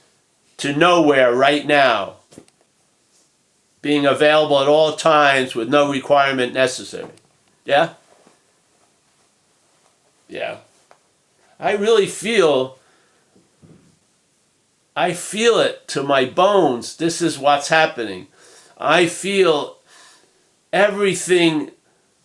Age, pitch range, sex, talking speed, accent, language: 50-69, 130-165 Hz, male, 85 wpm, American, English